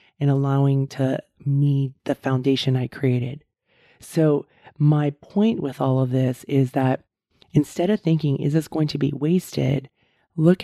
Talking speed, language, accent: 150 wpm, English, American